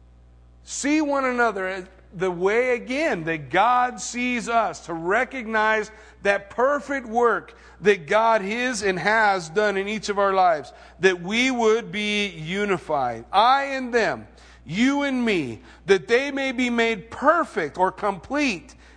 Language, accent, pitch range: English, American, 145-225 Hz